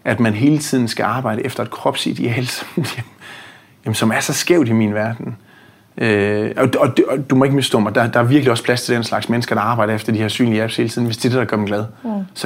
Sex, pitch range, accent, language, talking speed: male, 110-125 Hz, native, Danish, 225 wpm